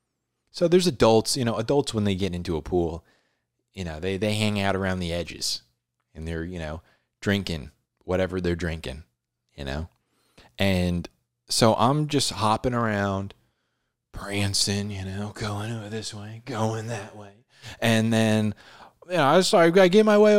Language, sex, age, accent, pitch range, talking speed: English, male, 20-39, American, 95-125 Hz, 170 wpm